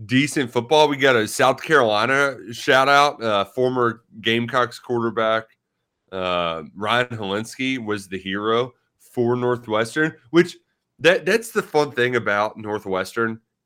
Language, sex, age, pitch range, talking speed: English, male, 30-49, 100-135 Hz, 125 wpm